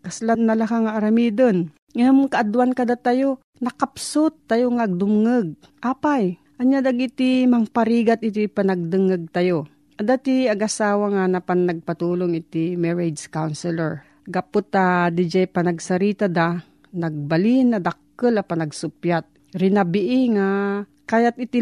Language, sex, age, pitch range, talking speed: Filipino, female, 40-59, 185-235 Hz, 115 wpm